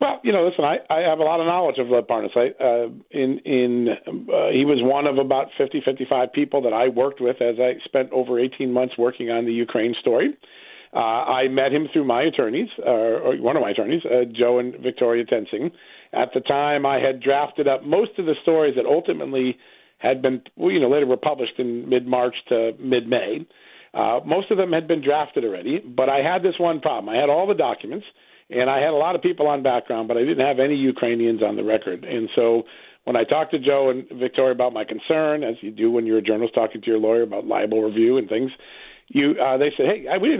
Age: 40-59